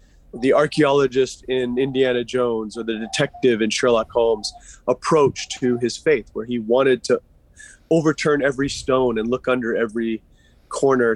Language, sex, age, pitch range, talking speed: English, male, 30-49, 120-150 Hz, 145 wpm